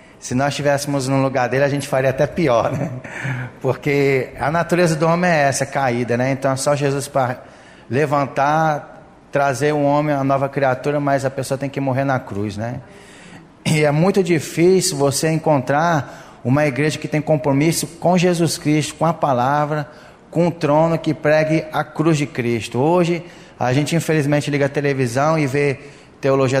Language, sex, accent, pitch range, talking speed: Portuguese, male, Brazilian, 130-160 Hz, 180 wpm